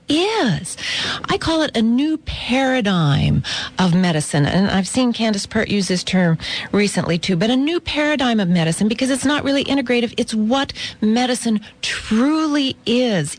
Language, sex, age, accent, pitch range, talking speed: English, female, 40-59, American, 210-265 Hz, 155 wpm